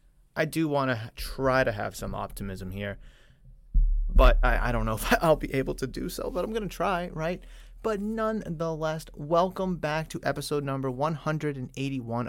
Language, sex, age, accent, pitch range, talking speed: English, male, 30-49, American, 105-140 Hz, 175 wpm